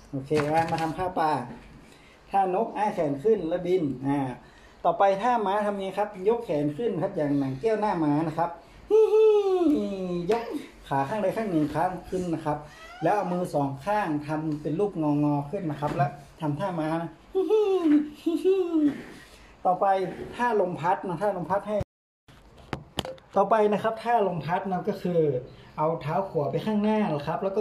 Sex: male